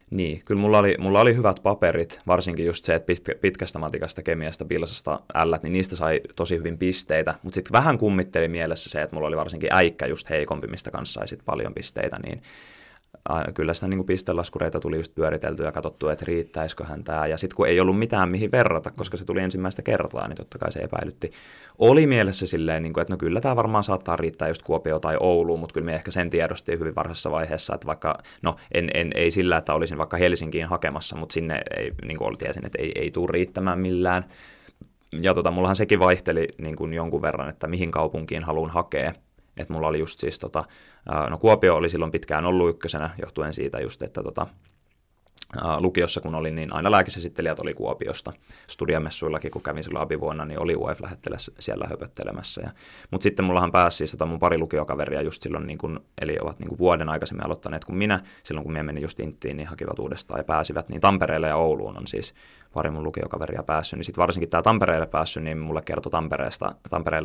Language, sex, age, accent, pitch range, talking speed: Finnish, male, 20-39, native, 80-95 Hz, 200 wpm